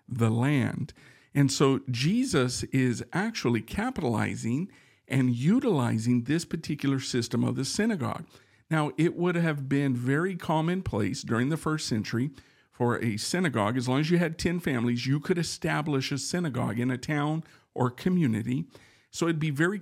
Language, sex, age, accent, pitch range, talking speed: English, male, 50-69, American, 125-165 Hz, 155 wpm